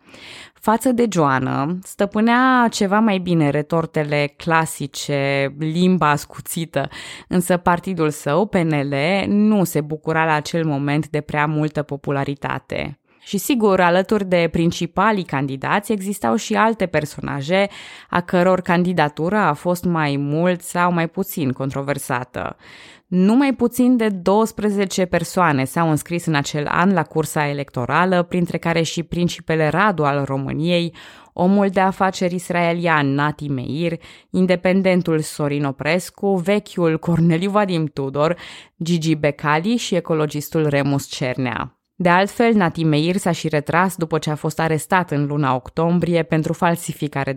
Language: Romanian